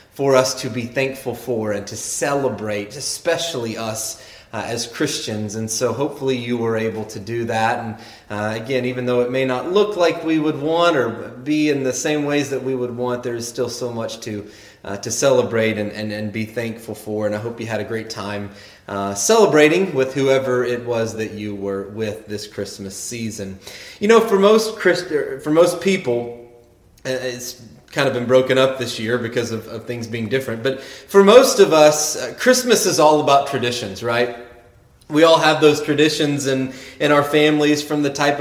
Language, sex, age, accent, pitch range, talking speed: English, male, 30-49, American, 120-150 Hz, 200 wpm